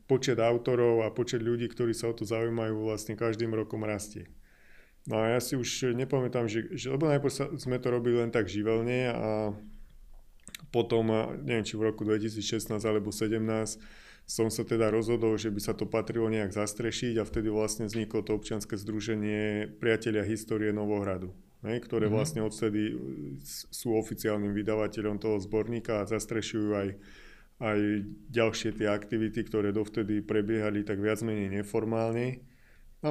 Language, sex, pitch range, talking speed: Slovak, male, 105-115 Hz, 150 wpm